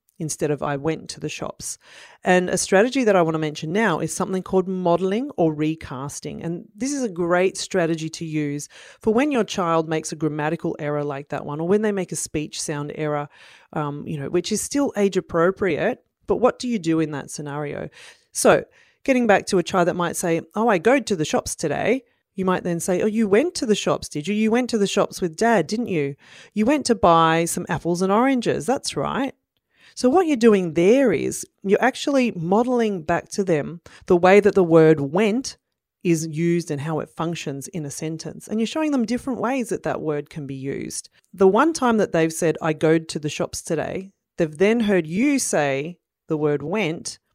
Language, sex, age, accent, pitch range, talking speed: English, female, 30-49, Australian, 160-215 Hz, 215 wpm